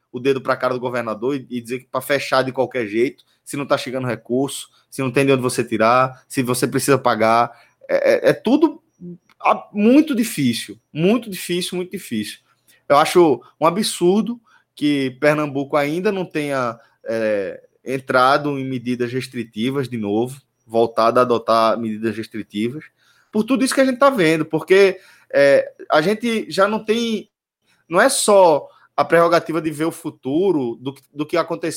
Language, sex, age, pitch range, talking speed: Portuguese, male, 20-39, 135-215 Hz, 160 wpm